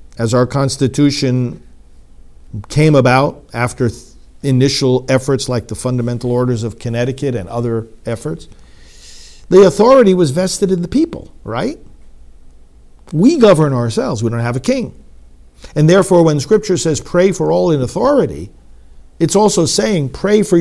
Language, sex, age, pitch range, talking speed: English, male, 50-69, 110-150 Hz, 140 wpm